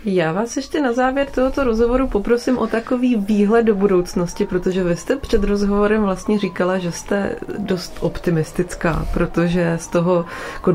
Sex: female